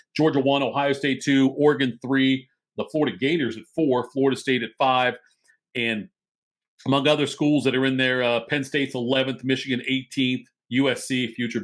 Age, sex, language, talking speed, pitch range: 40-59, male, English, 165 wpm, 120-150 Hz